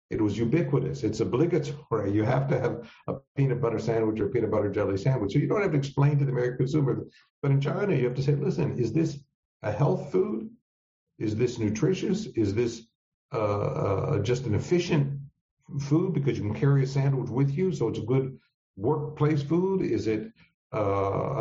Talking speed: 195 wpm